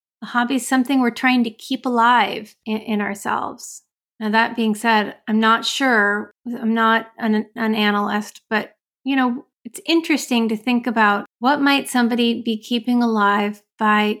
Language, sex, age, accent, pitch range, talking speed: English, female, 30-49, American, 210-250 Hz, 160 wpm